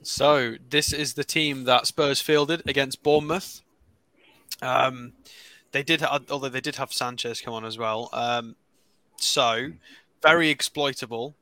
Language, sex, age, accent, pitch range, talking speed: English, male, 20-39, British, 125-150 Hz, 135 wpm